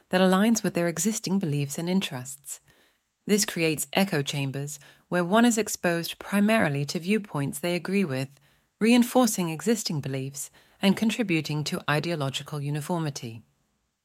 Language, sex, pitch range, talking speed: English, female, 145-205 Hz, 130 wpm